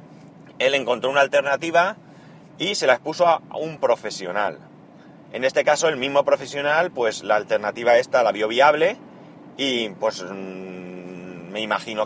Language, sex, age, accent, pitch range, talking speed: Spanish, male, 30-49, Spanish, 115-190 Hz, 145 wpm